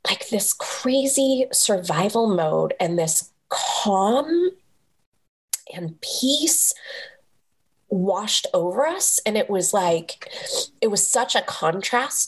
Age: 20-39